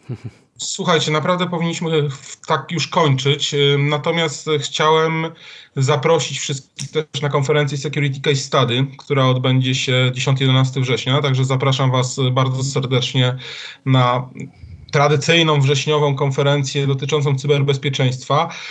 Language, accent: Polish, native